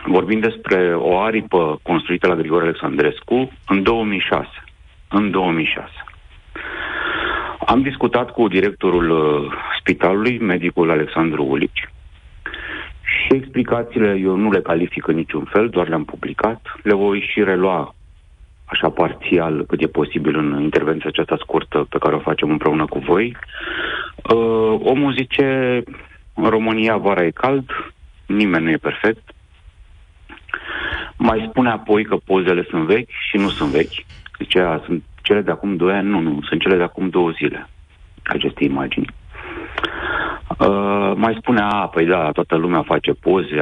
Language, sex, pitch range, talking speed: Romanian, male, 80-110 Hz, 145 wpm